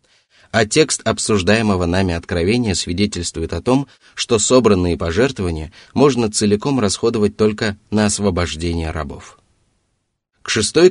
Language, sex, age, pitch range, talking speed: Russian, male, 30-49, 90-110 Hz, 110 wpm